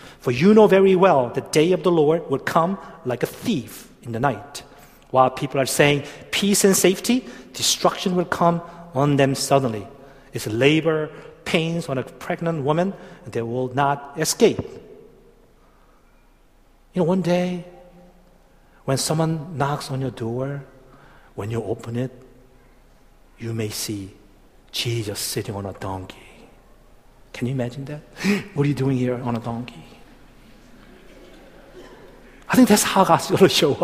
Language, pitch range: Korean, 120-180 Hz